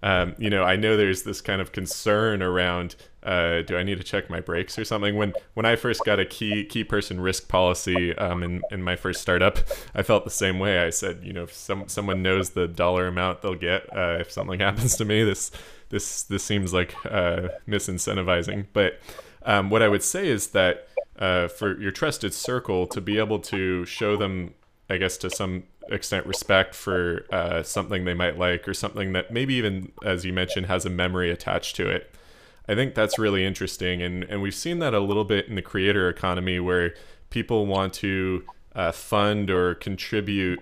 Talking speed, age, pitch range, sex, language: 205 wpm, 20-39, 90-100 Hz, male, English